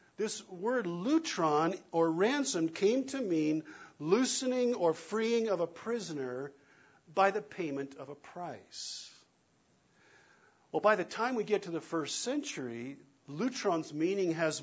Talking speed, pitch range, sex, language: 135 wpm, 155-200 Hz, male, English